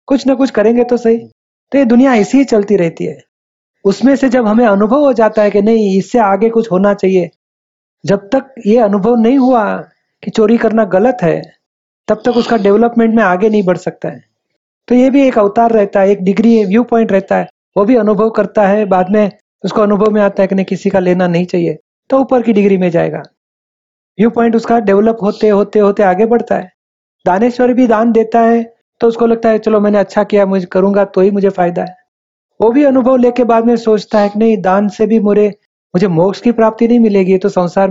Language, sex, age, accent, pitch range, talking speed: Hindi, male, 40-59, native, 195-230 Hz, 220 wpm